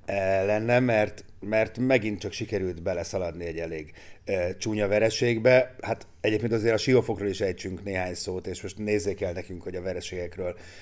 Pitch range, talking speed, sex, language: 95-120 Hz, 160 wpm, male, Hungarian